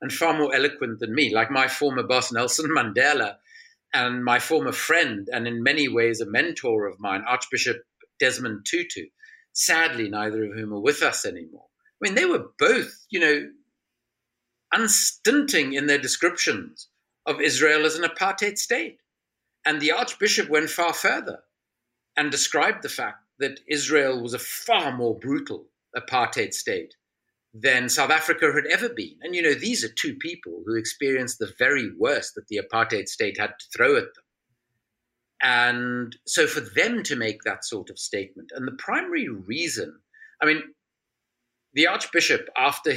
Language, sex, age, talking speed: English, male, 50-69, 165 wpm